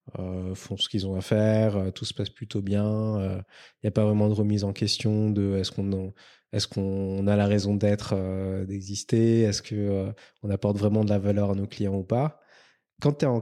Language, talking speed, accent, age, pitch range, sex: French, 235 wpm, French, 20-39, 100-115 Hz, male